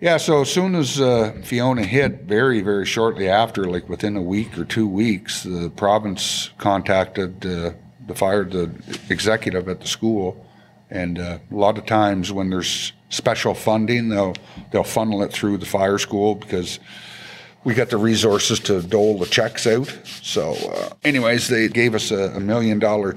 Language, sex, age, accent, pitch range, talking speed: English, male, 60-79, American, 95-110 Hz, 175 wpm